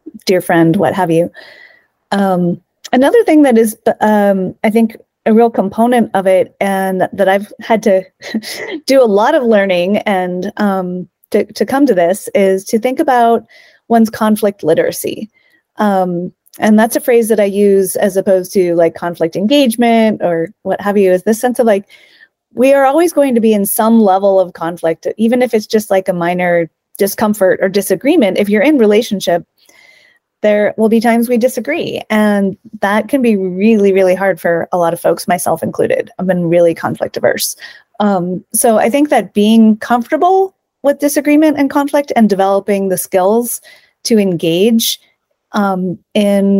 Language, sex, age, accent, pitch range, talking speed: English, female, 30-49, American, 185-235 Hz, 170 wpm